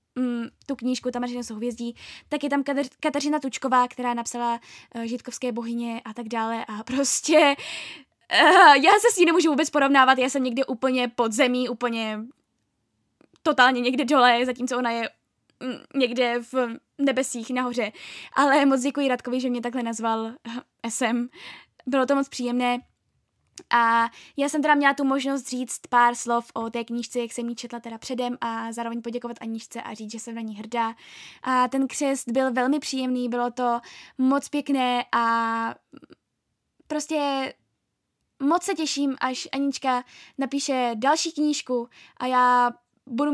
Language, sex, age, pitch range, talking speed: Czech, female, 10-29, 235-275 Hz, 150 wpm